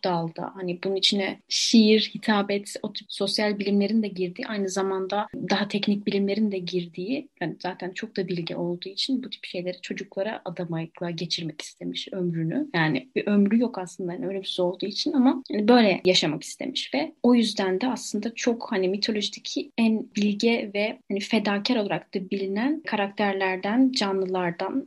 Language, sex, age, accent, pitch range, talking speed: Turkish, female, 30-49, native, 190-230 Hz, 160 wpm